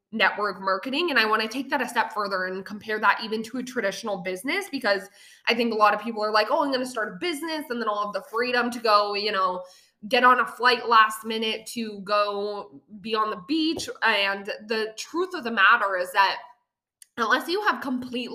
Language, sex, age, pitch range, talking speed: English, female, 20-39, 205-250 Hz, 225 wpm